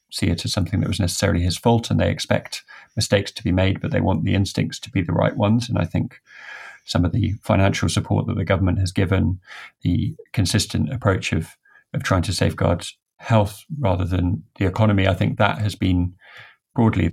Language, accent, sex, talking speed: English, British, male, 205 wpm